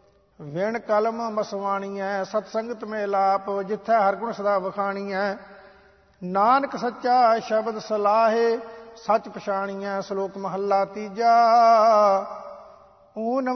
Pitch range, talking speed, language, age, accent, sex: 195-235 Hz, 60 wpm, English, 50-69, Indian, male